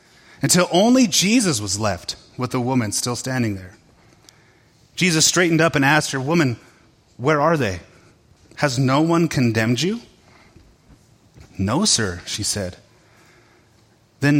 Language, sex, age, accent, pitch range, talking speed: English, male, 30-49, American, 110-145 Hz, 130 wpm